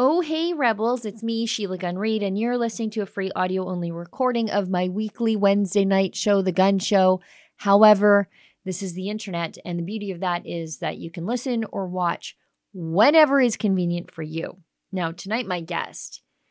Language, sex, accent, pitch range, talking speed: English, female, American, 185-230 Hz, 180 wpm